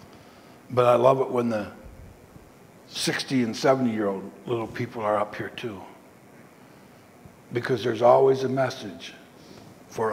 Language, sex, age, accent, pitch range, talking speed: English, male, 60-79, American, 125-160 Hz, 125 wpm